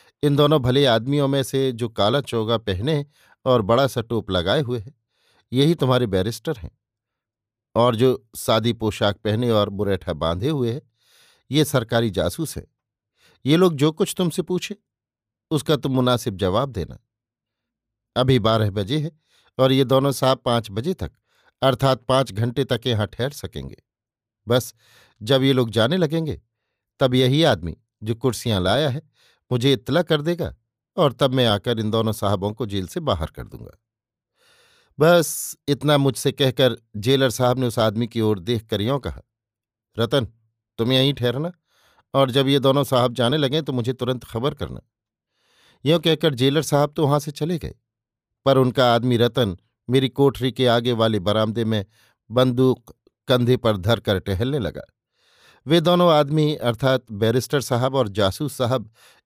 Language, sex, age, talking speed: Hindi, male, 50-69, 155 wpm